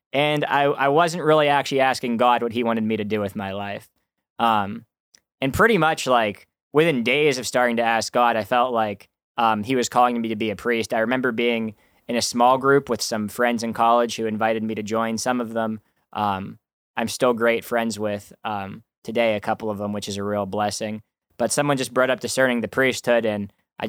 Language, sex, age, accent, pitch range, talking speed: English, male, 10-29, American, 110-130 Hz, 220 wpm